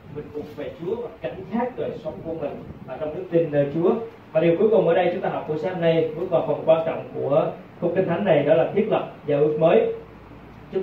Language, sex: Vietnamese, male